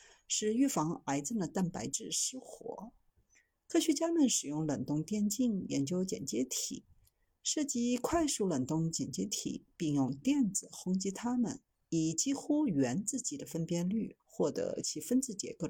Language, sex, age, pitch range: Chinese, female, 50-69, 185-260 Hz